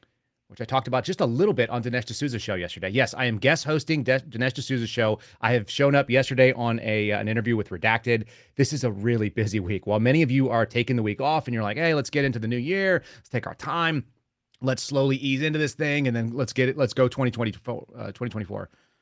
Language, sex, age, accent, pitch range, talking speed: English, male, 30-49, American, 105-135 Hz, 250 wpm